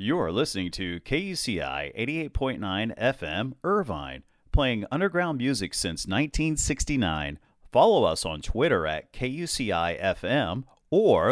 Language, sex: English, male